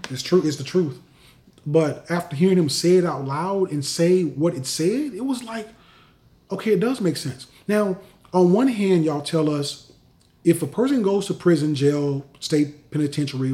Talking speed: 185 wpm